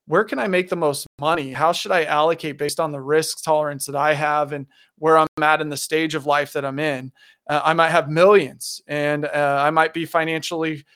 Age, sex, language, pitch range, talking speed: 20-39, male, English, 145-165 Hz, 230 wpm